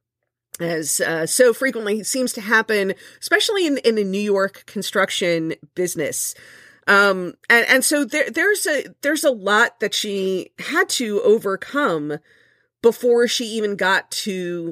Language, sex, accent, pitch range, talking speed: English, female, American, 170-230 Hz, 145 wpm